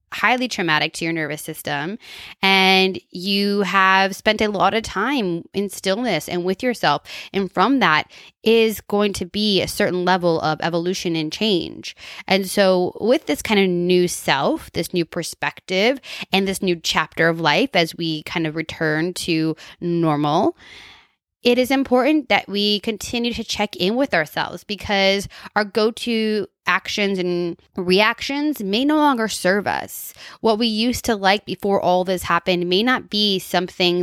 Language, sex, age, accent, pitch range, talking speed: English, female, 20-39, American, 170-205 Hz, 160 wpm